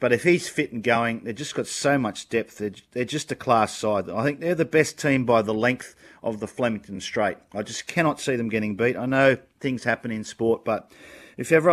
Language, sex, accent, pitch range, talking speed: English, male, Australian, 115-150 Hz, 235 wpm